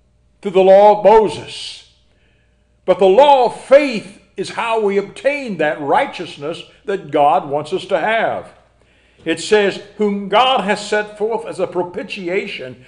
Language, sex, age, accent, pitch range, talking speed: English, male, 60-79, American, 160-210 Hz, 150 wpm